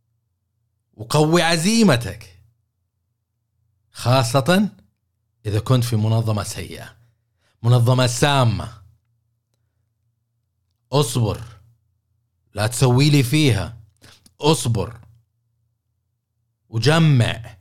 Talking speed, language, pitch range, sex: 60 wpm, Arabic, 110-125 Hz, male